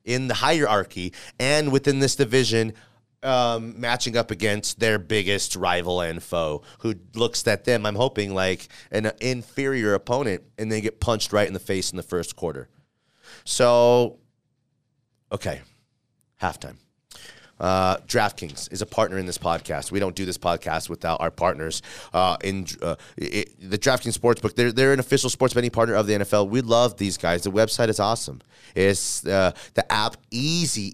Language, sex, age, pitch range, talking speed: English, male, 30-49, 100-125 Hz, 170 wpm